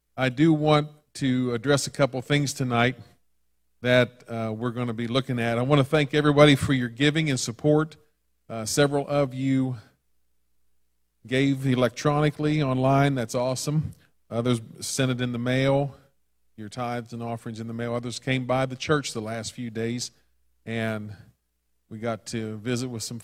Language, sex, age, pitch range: English, male, 40-59, 115-140 Hz